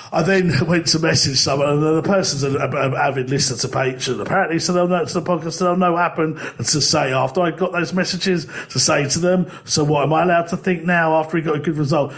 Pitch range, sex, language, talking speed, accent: 140-175 Hz, male, English, 240 wpm, British